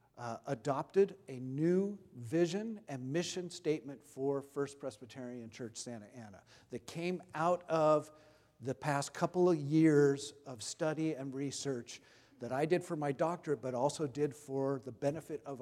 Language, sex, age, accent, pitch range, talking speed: English, male, 50-69, American, 130-185 Hz, 155 wpm